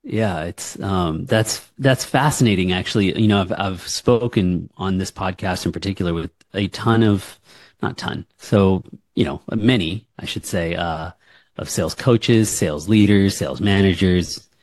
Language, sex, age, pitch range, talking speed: English, male, 30-49, 90-110 Hz, 155 wpm